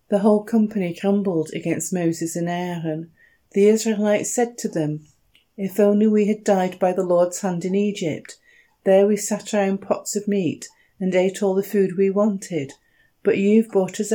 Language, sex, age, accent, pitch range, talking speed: English, female, 40-59, British, 175-215 Hz, 180 wpm